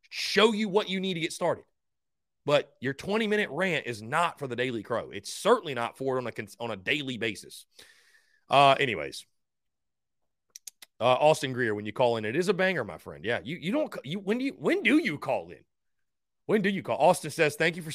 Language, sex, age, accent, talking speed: English, male, 30-49, American, 220 wpm